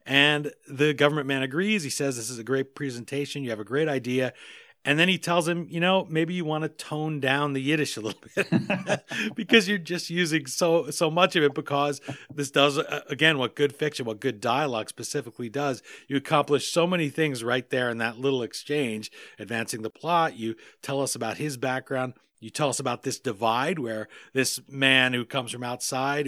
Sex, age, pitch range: male, 40-59, 120-150 Hz